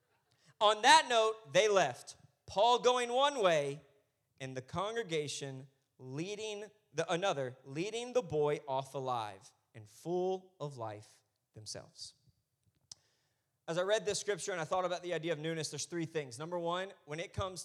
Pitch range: 145-190 Hz